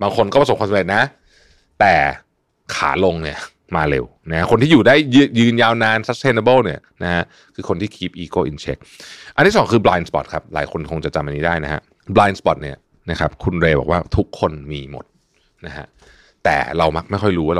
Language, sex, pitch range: Thai, male, 80-115 Hz